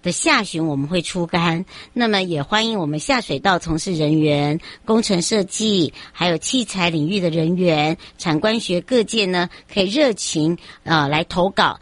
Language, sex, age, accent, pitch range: Chinese, male, 60-79, American, 160-205 Hz